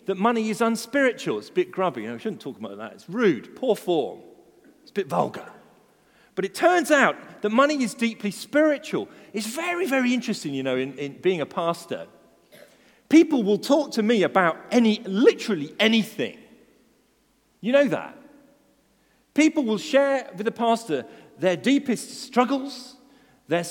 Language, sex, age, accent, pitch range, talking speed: English, male, 40-59, British, 165-270 Hz, 160 wpm